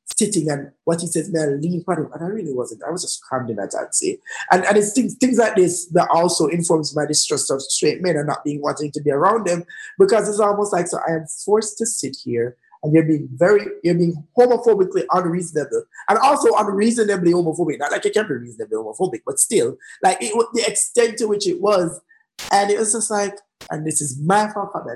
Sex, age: male, 20-39